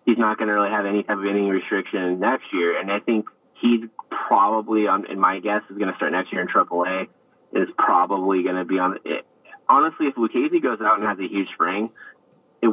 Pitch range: 95-105 Hz